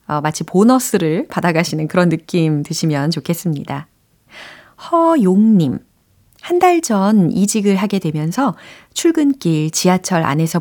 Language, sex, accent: Korean, female, native